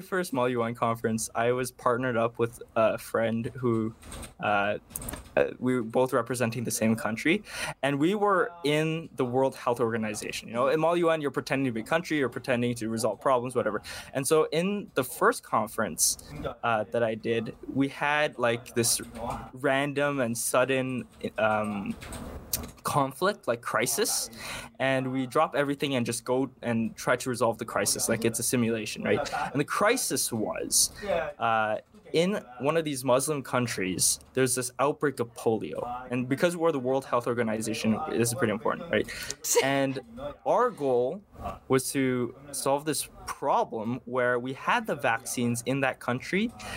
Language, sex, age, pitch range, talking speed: English, male, 20-39, 115-140 Hz, 165 wpm